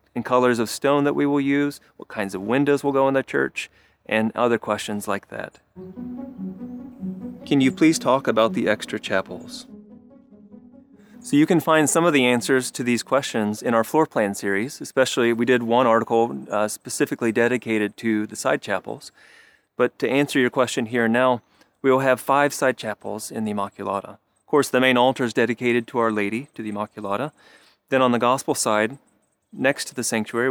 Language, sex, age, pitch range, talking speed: English, male, 30-49, 115-145 Hz, 190 wpm